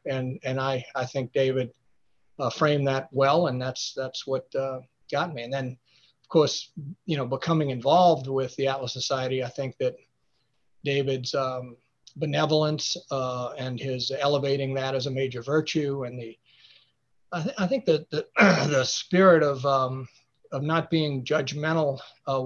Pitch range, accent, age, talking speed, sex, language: 130-155 Hz, American, 40-59, 165 wpm, male, English